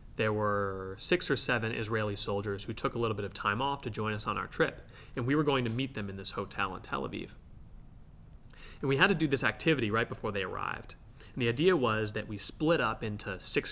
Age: 30-49